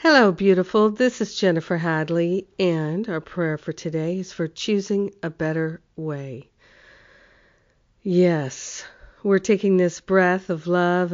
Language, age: English, 50-69